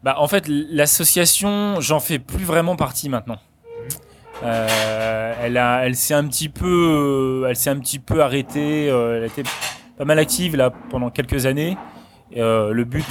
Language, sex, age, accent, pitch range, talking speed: French, male, 20-39, French, 115-140 Hz, 180 wpm